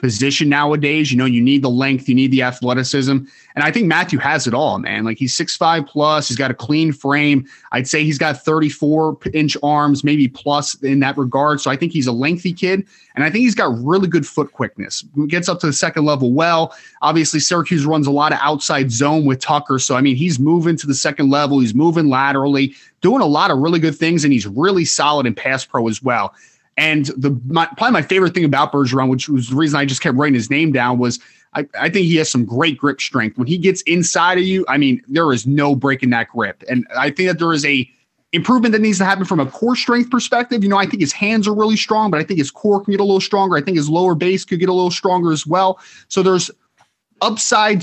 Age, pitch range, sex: 30-49, 135-170 Hz, male